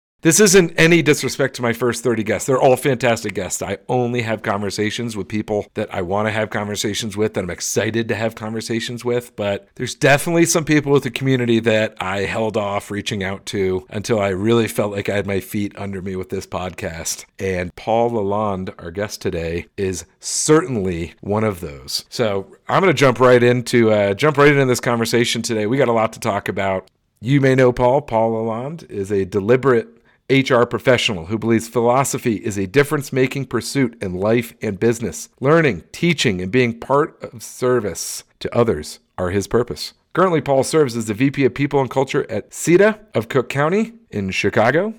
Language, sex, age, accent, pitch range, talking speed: English, male, 50-69, American, 105-140 Hz, 190 wpm